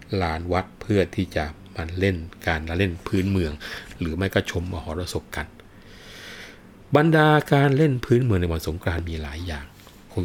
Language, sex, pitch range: Thai, male, 85-105 Hz